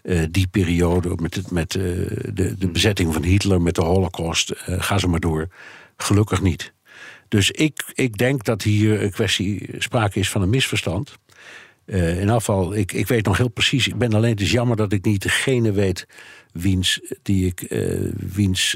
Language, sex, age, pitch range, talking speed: Dutch, male, 60-79, 90-110 Hz, 190 wpm